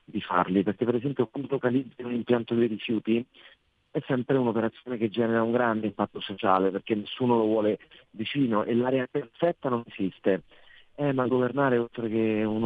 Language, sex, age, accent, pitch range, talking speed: Italian, male, 40-59, native, 105-125 Hz, 170 wpm